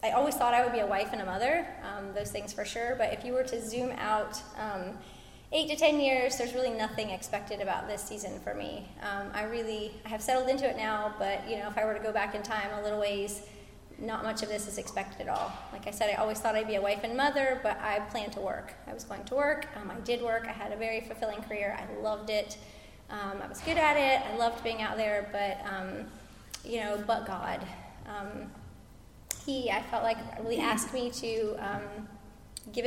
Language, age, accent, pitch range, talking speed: English, 20-39, American, 205-250 Hz, 240 wpm